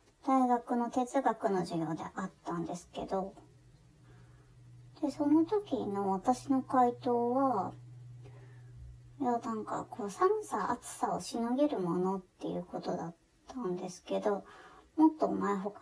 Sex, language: male, Japanese